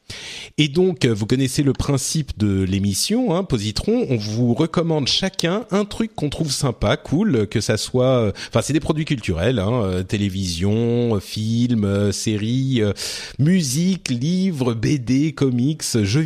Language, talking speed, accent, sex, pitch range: French, 135 wpm, French, male, 105-155 Hz